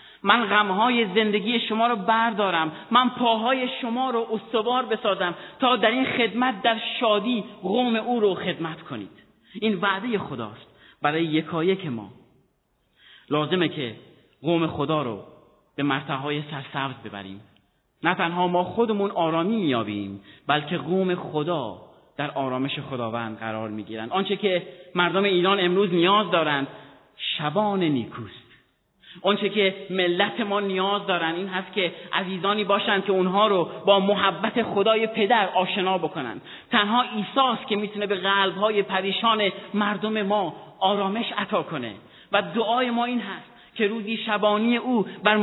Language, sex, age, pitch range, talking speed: Persian, male, 30-49, 165-215 Hz, 135 wpm